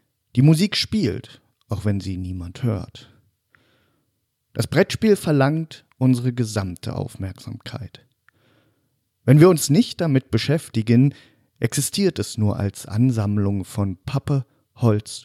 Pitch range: 105-130 Hz